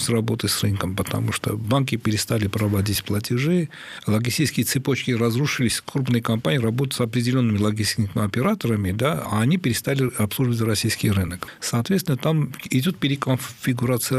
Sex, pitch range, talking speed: male, 110-135 Hz, 130 wpm